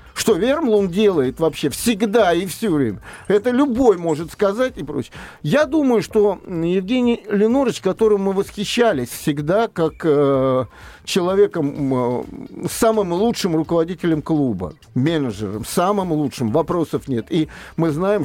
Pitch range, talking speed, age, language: 155-225 Hz, 125 wpm, 50-69, Russian